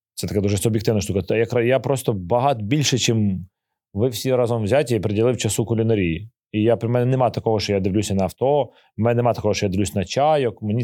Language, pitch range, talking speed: Ukrainian, 105-130 Hz, 215 wpm